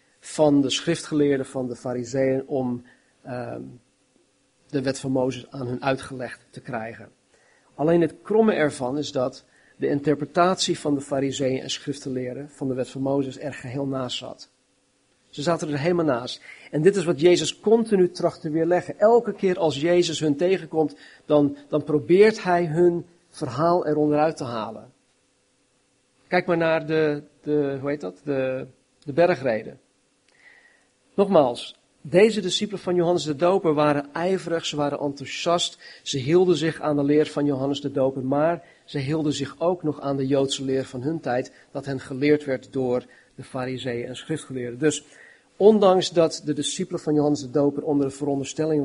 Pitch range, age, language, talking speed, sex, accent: 135-170 Hz, 40-59, Dutch, 165 wpm, male, Dutch